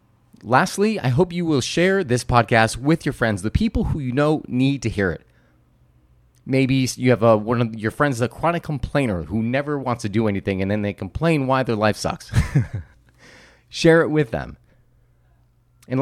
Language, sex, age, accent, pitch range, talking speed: English, male, 30-49, American, 115-155 Hz, 185 wpm